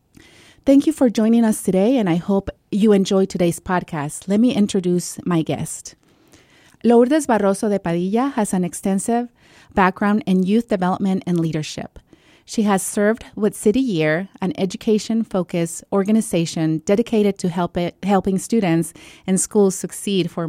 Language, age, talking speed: English, 30-49, 140 wpm